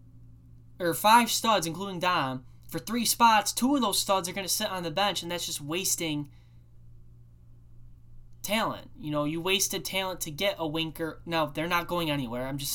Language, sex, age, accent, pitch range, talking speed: English, male, 10-29, American, 125-170 Hz, 190 wpm